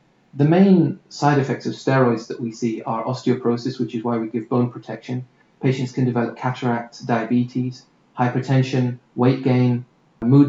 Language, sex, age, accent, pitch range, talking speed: English, male, 30-49, British, 120-140 Hz, 155 wpm